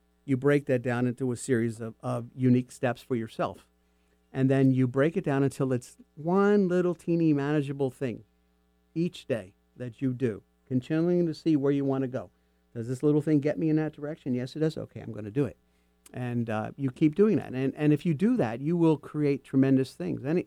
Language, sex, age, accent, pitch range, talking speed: English, male, 50-69, American, 115-155 Hz, 220 wpm